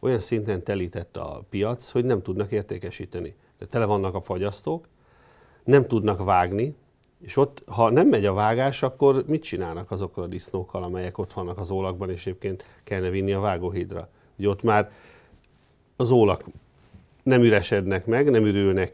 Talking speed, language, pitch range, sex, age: 160 wpm, Hungarian, 95-115 Hz, male, 40-59